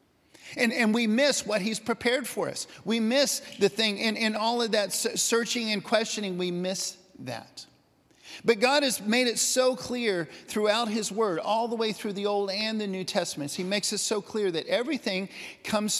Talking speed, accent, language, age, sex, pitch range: 195 wpm, American, English, 50-69, male, 175-220 Hz